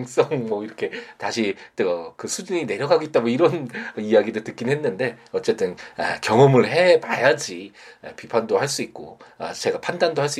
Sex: male